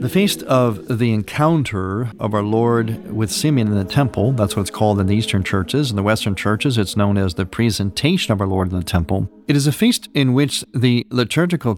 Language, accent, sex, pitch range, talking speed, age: English, American, male, 100-135 Hz, 225 wpm, 50-69